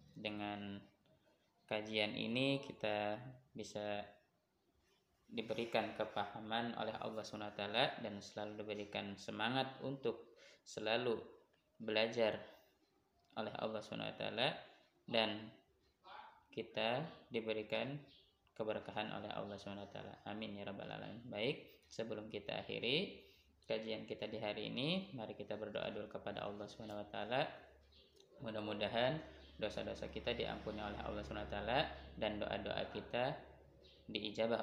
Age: 20-39